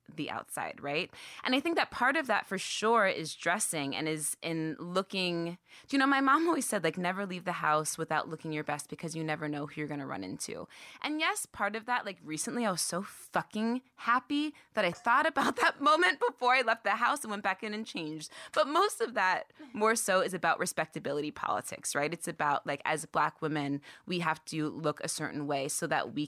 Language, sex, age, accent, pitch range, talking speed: English, female, 20-39, American, 155-215 Hz, 225 wpm